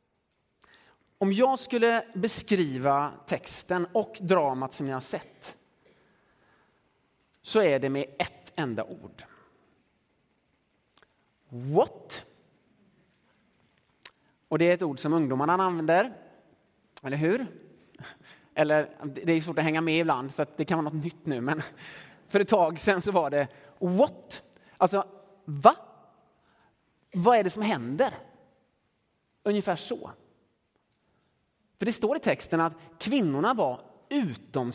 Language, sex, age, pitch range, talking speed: Swedish, male, 30-49, 145-210 Hz, 125 wpm